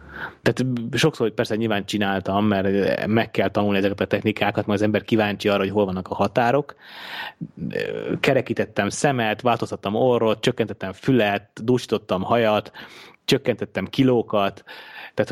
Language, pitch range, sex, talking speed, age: Hungarian, 100-125 Hz, male, 135 wpm, 30-49